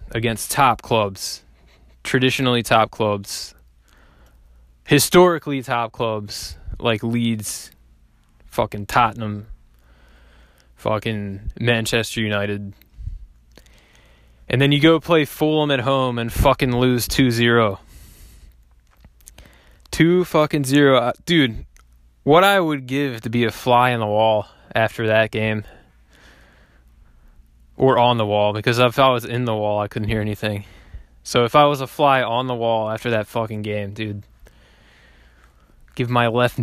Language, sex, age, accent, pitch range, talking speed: English, male, 20-39, American, 75-125 Hz, 125 wpm